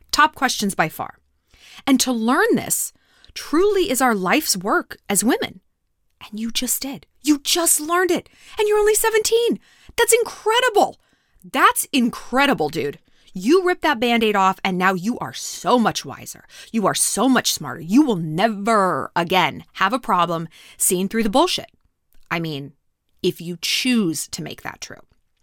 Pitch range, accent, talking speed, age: 195-300 Hz, American, 165 wpm, 20-39